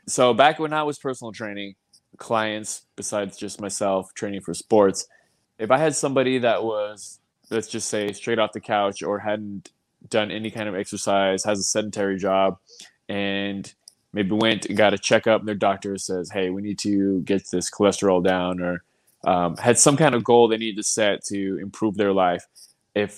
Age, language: 20-39, English